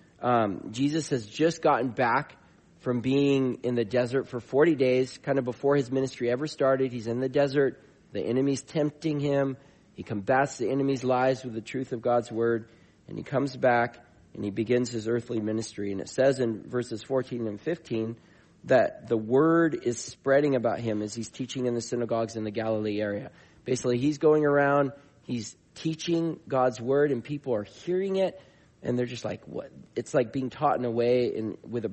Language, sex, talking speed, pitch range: English, male, 195 wpm, 110-135 Hz